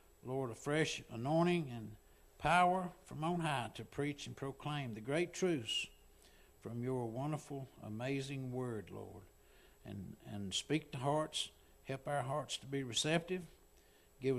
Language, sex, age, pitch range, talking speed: English, male, 60-79, 115-145 Hz, 140 wpm